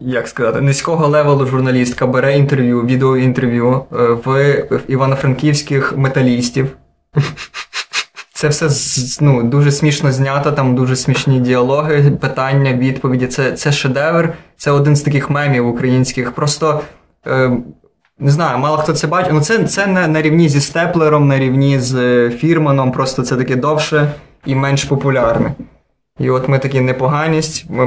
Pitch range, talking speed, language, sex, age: 130-150 Hz, 140 wpm, Ukrainian, male, 20-39